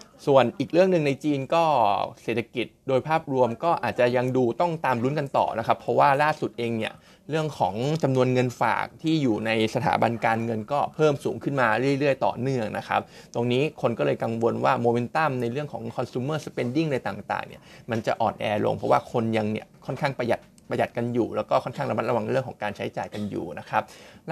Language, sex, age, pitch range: Thai, male, 20-39, 120-150 Hz